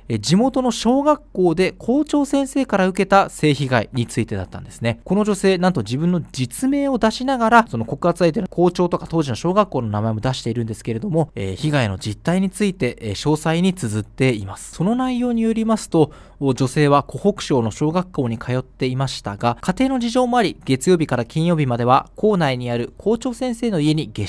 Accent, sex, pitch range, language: native, male, 125-190 Hz, Japanese